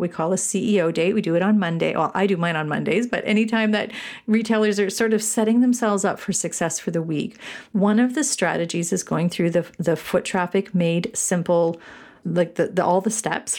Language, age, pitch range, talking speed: English, 40-59, 170-220 Hz, 220 wpm